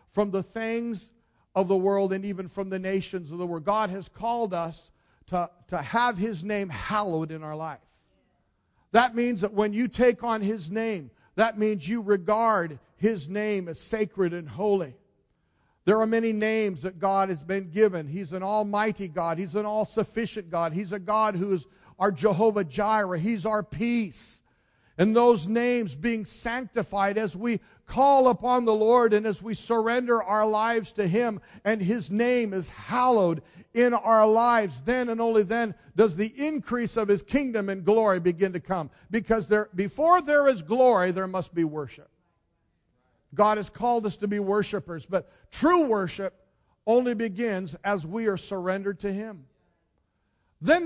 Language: English